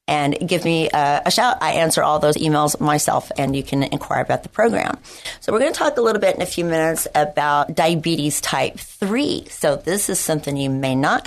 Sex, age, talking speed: female, 40-59, 225 wpm